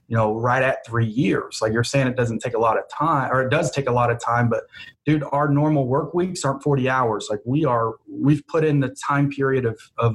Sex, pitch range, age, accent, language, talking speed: male, 115-145 Hz, 30-49, American, English, 260 wpm